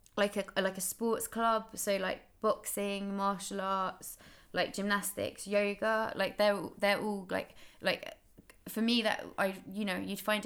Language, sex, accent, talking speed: English, female, British, 160 wpm